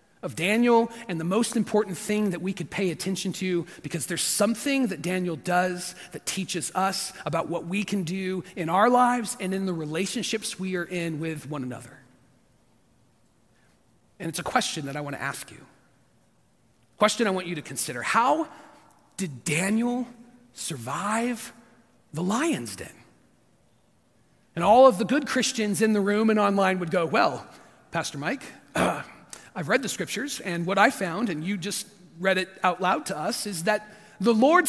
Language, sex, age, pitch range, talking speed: English, male, 40-59, 175-240 Hz, 175 wpm